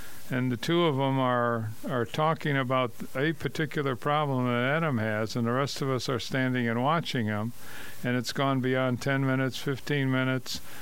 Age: 50-69